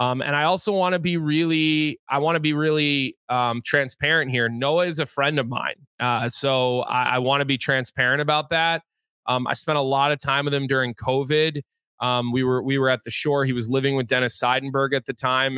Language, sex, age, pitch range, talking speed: English, male, 20-39, 125-150 Hz, 235 wpm